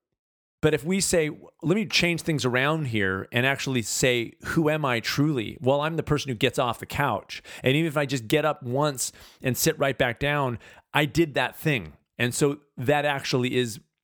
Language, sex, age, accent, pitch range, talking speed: English, male, 40-59, American, 115-150 Hz, 205 wpm